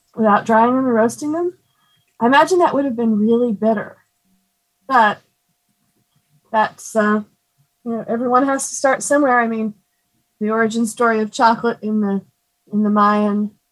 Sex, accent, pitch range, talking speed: female, American, 200-245 Hz, 155 wpm